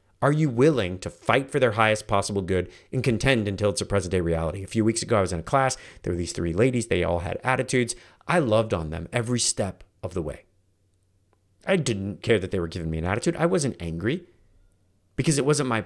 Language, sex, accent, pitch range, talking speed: English, male, American, 95-135 Hz, 235 wpm